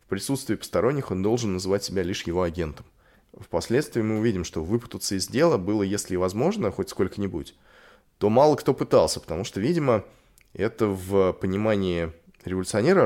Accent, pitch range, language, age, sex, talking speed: native, 95-125 Hz, Russian, 20-39, male, 150 wpm